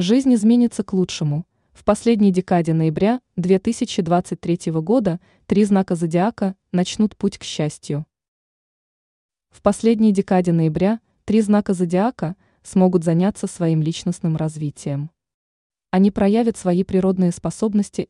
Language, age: Russian, 20-39